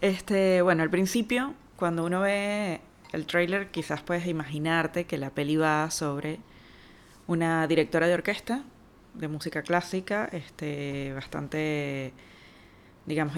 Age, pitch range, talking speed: 20-39, 150-180 Hz, 110 wpm